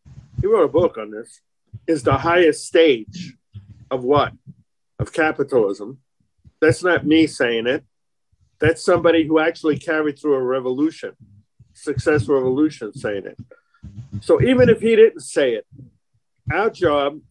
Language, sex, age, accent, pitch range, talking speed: English, male, 50-69, American, 130-160 Hz, 140 wpm